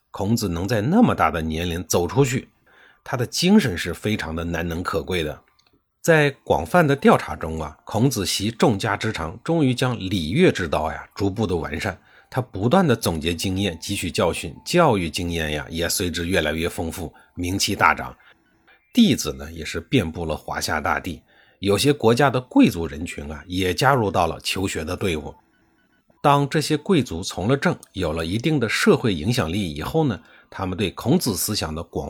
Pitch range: 85-130 Hz